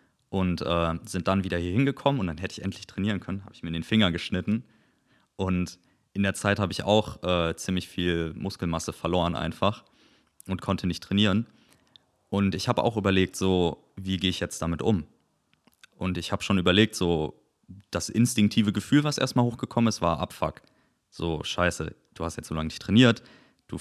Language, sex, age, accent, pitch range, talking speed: German, male, 30-49, German, 85-115 Hz, 190 wpm